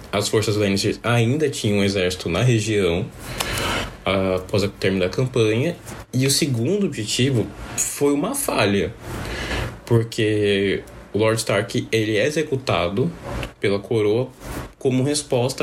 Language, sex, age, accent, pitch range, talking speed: Portuguese, male, 20-39, Brazilian, 100-130 Hz, 125 wpm